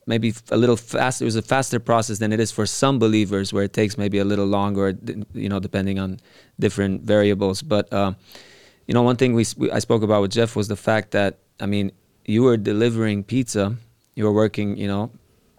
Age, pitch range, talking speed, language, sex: 20-39, 100-115 Hz, 215 wpm, Romanian, male